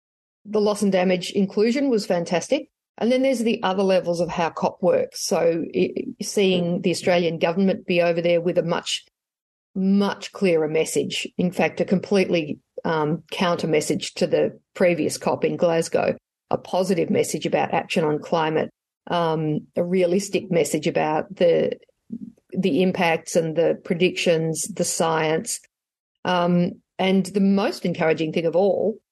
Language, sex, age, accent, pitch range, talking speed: English, female, 50-69, Australian, 170-205 Hz, 150 wpm